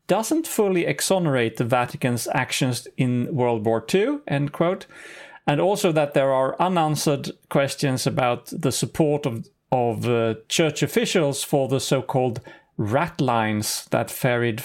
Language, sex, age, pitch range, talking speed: English, male, 40-59, 125-160 Hz, 140 wpm